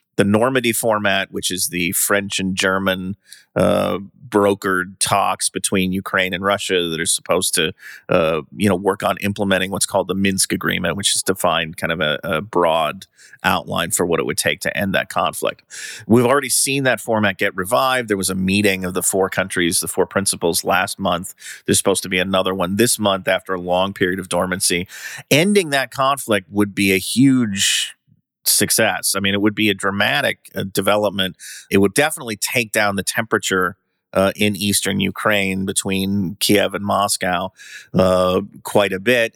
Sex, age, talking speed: male, 30-49, 185 wpm